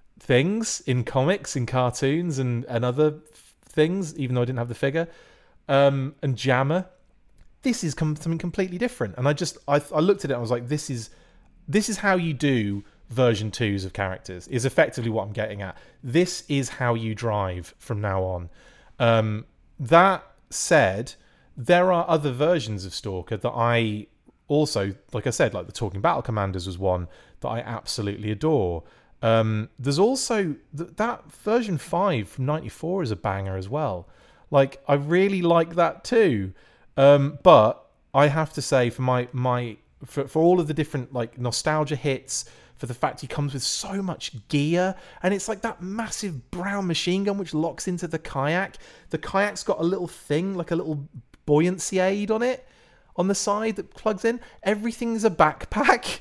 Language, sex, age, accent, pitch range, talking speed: English, male, 30-49, British, 120-175 Hz, 185 wpm